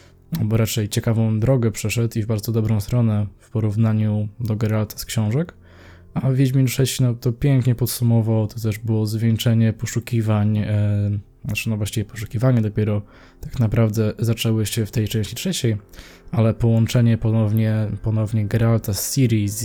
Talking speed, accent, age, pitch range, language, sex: 155 wpm, native, 20-39, 110-120 Hz, Polish, male